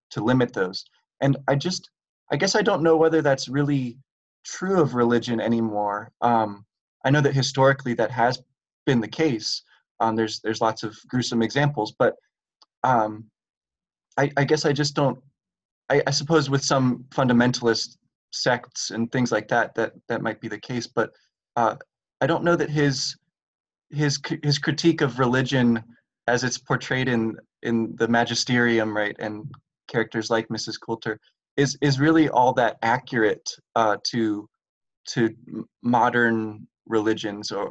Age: 20-39